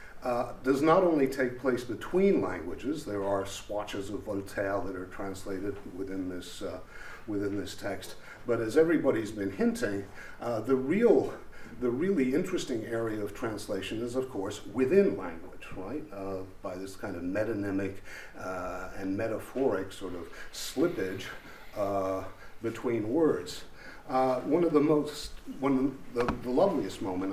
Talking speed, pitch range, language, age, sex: 145 wpm, 100-140 Hz, English, 50-69, male